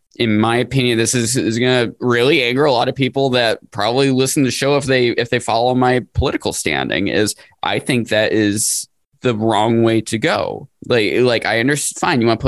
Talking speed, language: 220 wpm, English